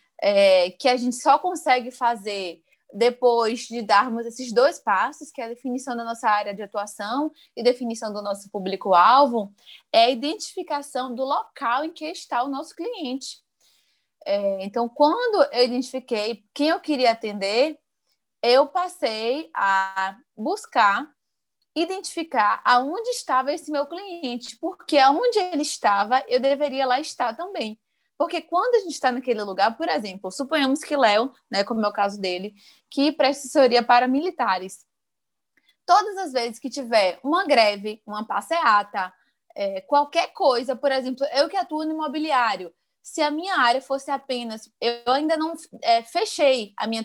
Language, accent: Portuguese, Brazilian